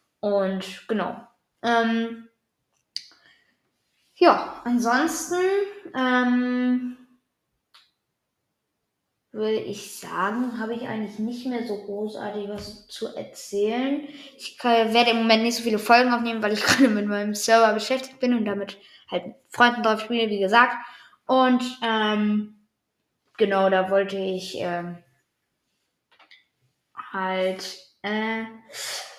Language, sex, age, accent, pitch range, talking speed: German, female, 20-39, German, 205-240 Hz, 110 wpm